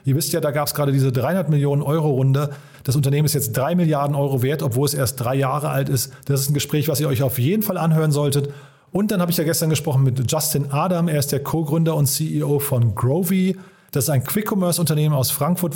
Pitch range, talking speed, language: 135-165 Hz, 230 wpm, German